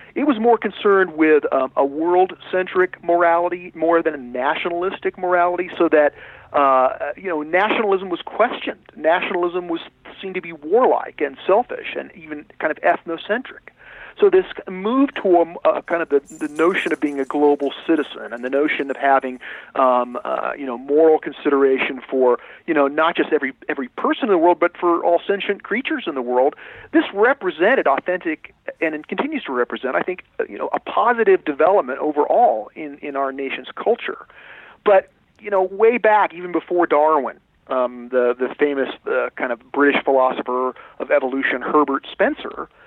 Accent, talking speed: American, 170 wpm